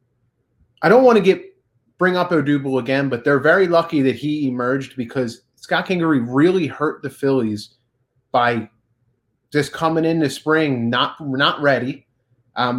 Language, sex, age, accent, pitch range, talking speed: English, male, 30-49, American, 125-170 Hz, 155 wpm